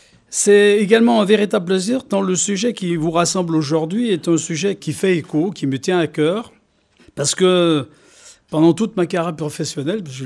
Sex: male